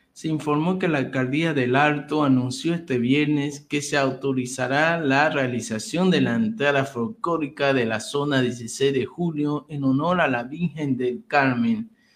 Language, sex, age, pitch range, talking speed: Spanish, male, 50-69, 125-155 Hz, 160 wpm